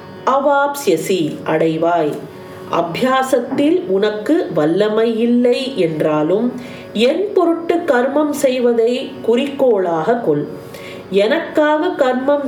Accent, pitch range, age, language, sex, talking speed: native, 195-270 Hz, 40-59, Tamil, female, 65 wpm